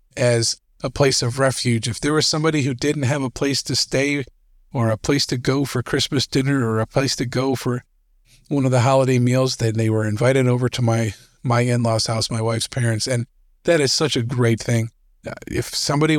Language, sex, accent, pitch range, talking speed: English, male, American, 115-140 Hz, 210 wpm